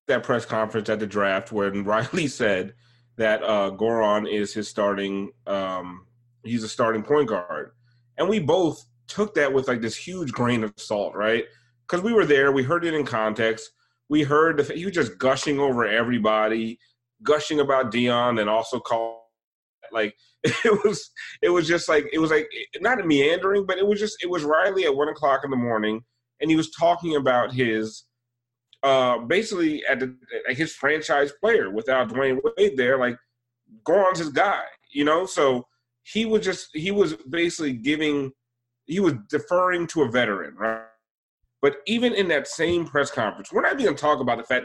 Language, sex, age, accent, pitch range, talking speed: English, male, 30-49, American, 115-150 Hz, 185 wpm